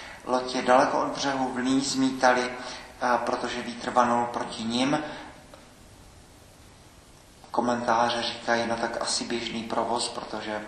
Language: Czech